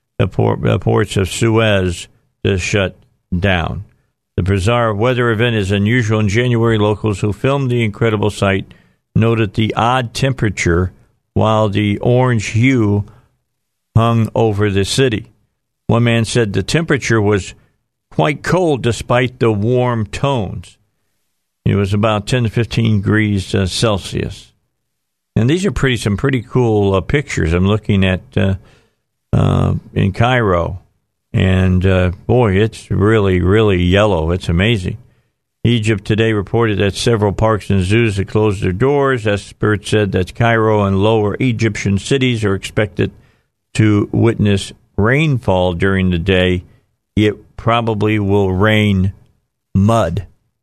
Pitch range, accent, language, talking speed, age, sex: 100-115 Hz, American, English, 135 wpm, 50-69, male